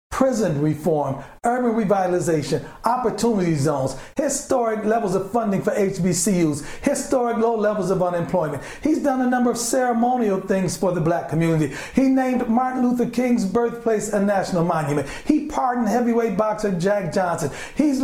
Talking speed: 145 wpm